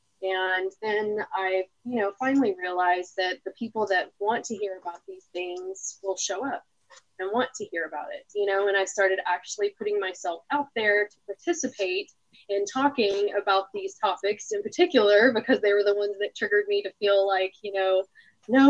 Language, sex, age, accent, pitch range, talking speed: English, female, 20-39, American, 190-230 Hz, 190 wpm